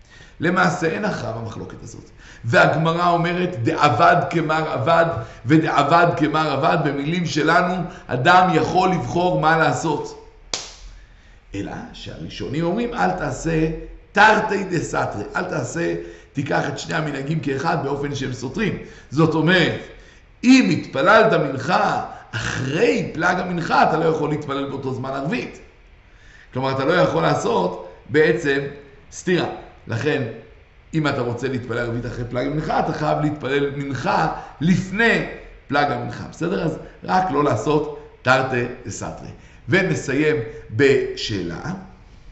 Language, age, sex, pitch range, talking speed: Hebrew, 60-79, male, 130-175 Hz, 120 wpm